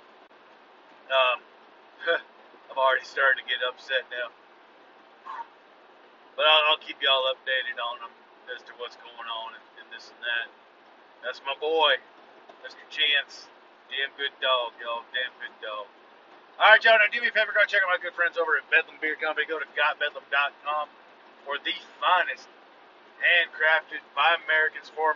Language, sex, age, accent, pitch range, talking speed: English, male, 40-59, American, 150-185 Hz, 160 wpm